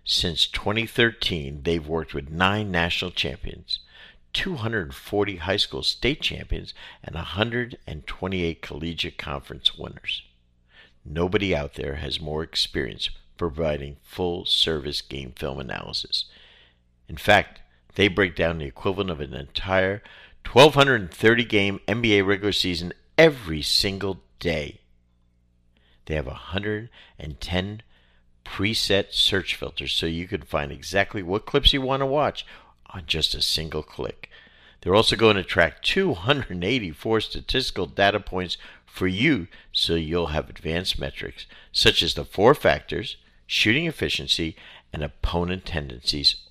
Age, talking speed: 50-69, 120 wpm